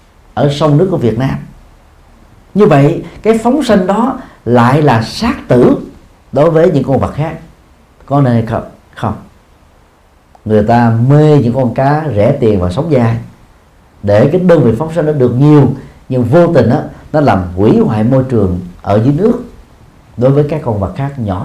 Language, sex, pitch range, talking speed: Vietnamese, male, 100-155 Hz, 180 wpm